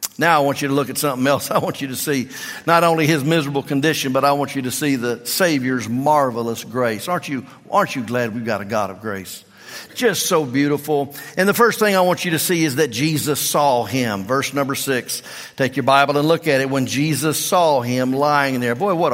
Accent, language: American, English